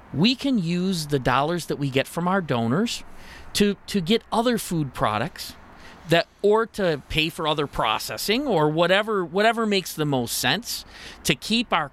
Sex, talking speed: male, 170 wpm